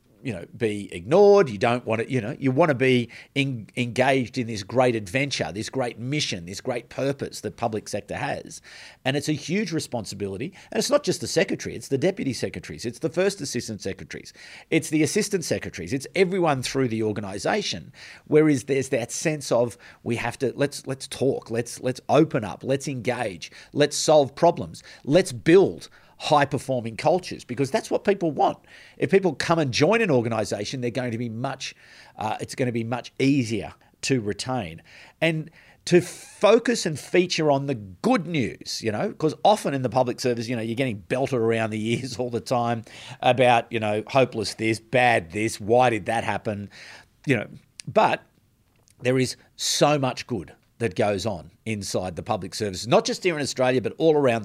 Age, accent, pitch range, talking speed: 40-59, Australian, 115-145 Hz, 190 wpm